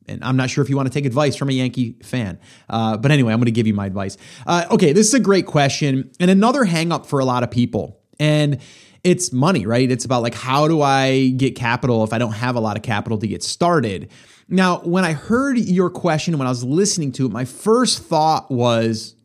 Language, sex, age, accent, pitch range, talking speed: English, male, 30-49, American, 120-160 Hz, 245 wpm